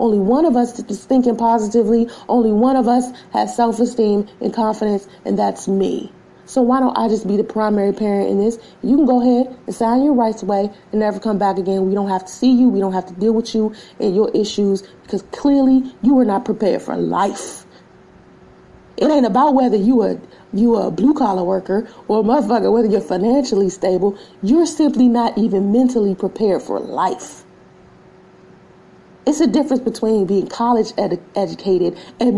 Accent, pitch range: American, 205-275 Hz